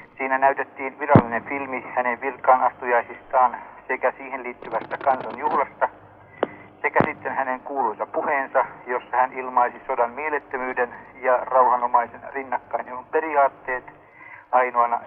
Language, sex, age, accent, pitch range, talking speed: Finnish, male, 60-79, native, 125-135 Hz, 105 wpm